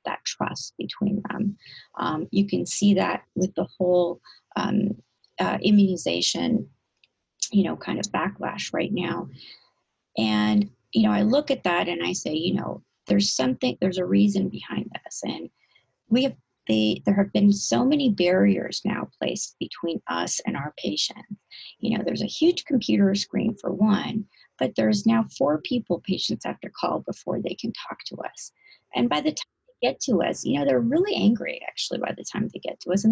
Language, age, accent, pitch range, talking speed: English, 30-49, American, 175-235 Hz, 185 wpm